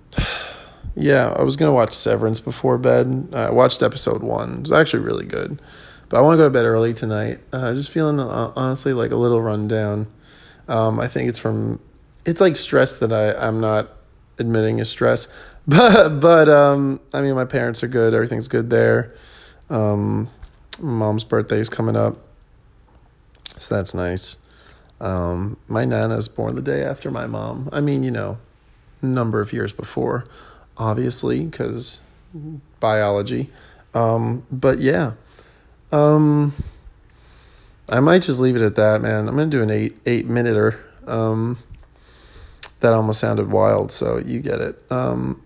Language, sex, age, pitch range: English, male, 20-39, 110-135 Hz